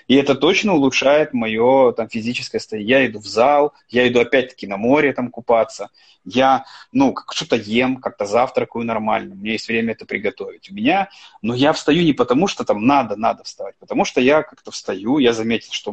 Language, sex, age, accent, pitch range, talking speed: Russian, male, 20-39, native, 115-190 Hz, 190 wpm